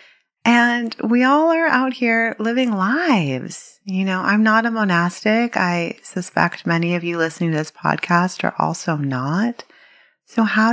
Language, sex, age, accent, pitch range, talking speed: English, female, 30-49, American, 155-215 Hz, 155 wpm